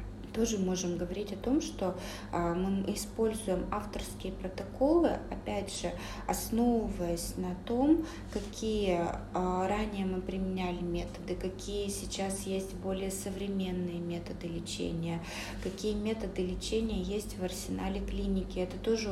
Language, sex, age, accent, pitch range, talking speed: Russian, female, 20-39, native, 175-210 Hz, 115 wpm